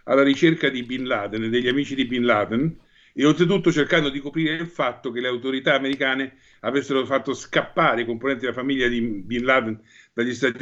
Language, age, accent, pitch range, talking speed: Italian, 50-69, native, 120-145 Hz, 190 wpm